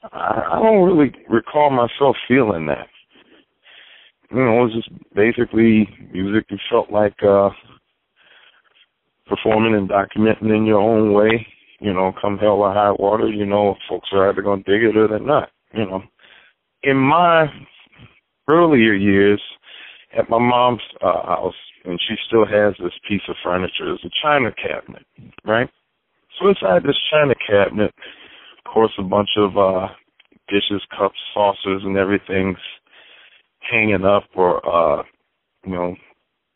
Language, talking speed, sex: English, 145 wpm, male